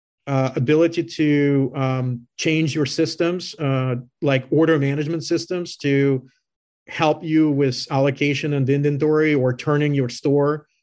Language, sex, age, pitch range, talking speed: English, male, 40-59, 135-155 Hz, 125 wpm